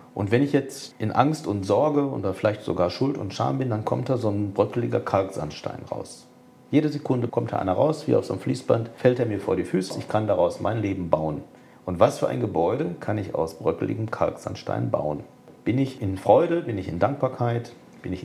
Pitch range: 95-125 Hz